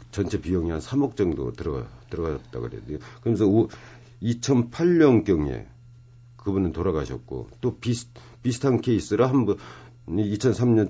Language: Korean